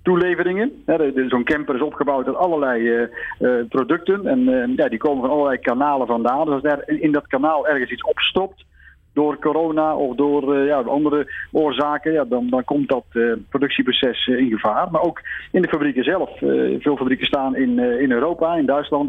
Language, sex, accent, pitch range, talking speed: Dutch, male, Dutch, 135-170 Hz, 190 wpm